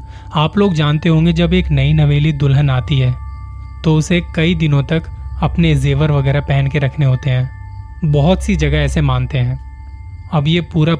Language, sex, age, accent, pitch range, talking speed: Hindi, male, 20-39, native, 100-160 Hz, 180 wpm